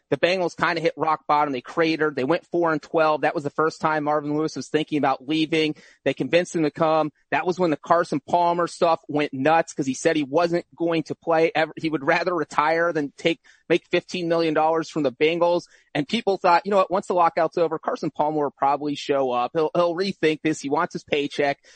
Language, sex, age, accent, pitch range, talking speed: English, male, 30-49, American, 150-175 Hz, 230 wpm